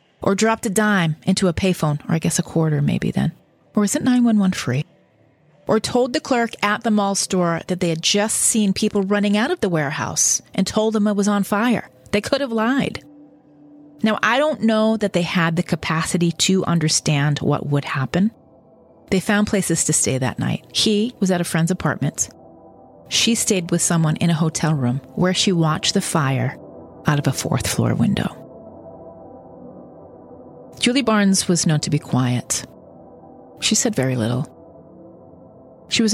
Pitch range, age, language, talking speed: 155-215 Hz, 30-49, English, 180 wpm